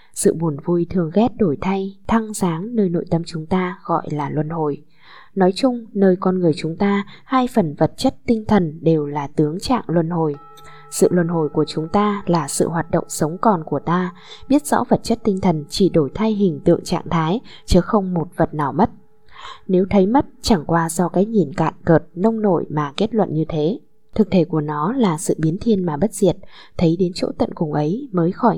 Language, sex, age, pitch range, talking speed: Vietnamese, female, 10-29, 155-200 Hz, 225 wpm